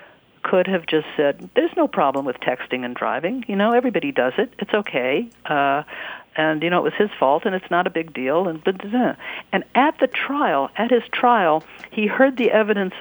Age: 50-69